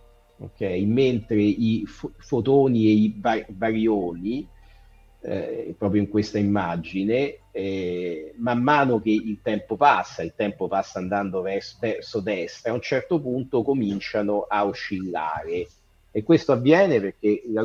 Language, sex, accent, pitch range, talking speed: Italian, male, native, 105-130 Hz, 135 wpm